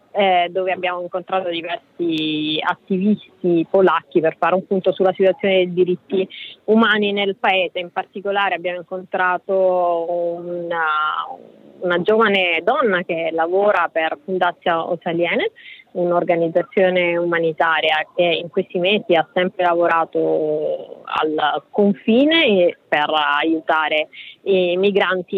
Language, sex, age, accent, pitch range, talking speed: Italian, female, 20-39, native, 170-205 Hz, 110 wpm